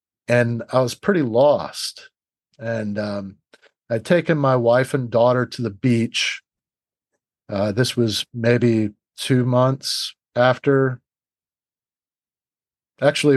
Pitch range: 110-130 Hz